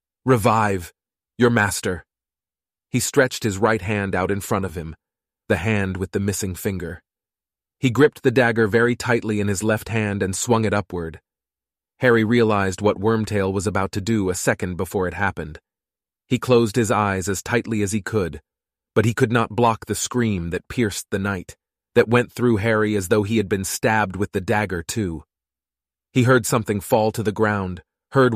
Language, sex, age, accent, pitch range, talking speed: English, male, 30-49, American, 100-120 Hz, 185 wpm